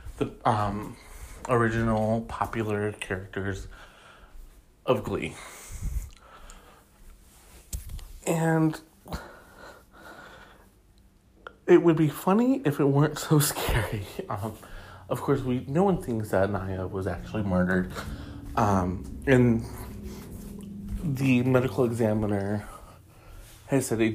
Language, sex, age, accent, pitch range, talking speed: English, male, 30-49, American, 95-120 Hz, 90 wpm